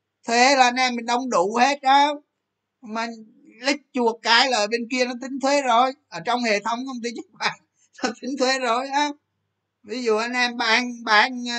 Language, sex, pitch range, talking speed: Vietnamese, male, 150-225 Hz, 200 wpm